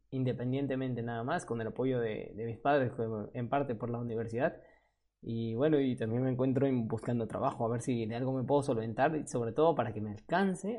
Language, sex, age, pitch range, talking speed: Spanish, male, 20-39, 115-145 Hz, 205 wpm